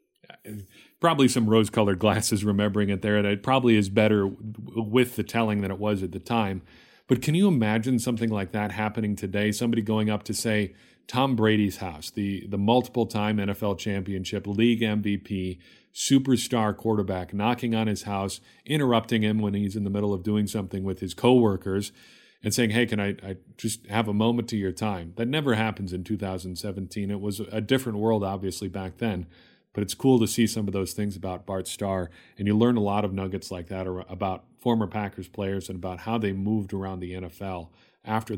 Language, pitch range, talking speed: English, 95-115 Hz, 195 wpm